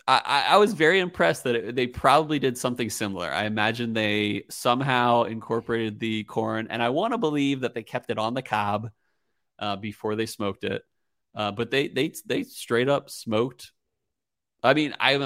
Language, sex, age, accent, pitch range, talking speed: English, male, 30-49, American, 110-135 Hz, 185 wpm